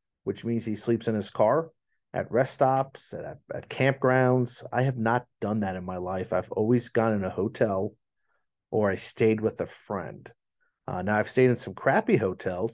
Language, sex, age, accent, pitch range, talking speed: English, male, 40-59, American, 95-120 Hz, 195 wpm